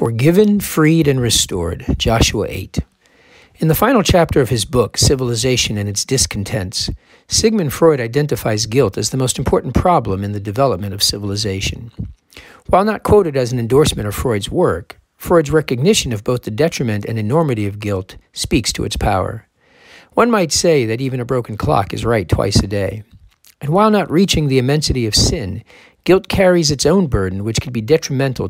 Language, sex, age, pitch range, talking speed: English, male, 50-69, 105-150 Hz, 175 wpm